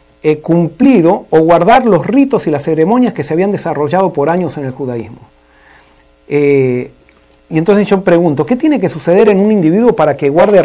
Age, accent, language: 40-59, Argentinian, Spanish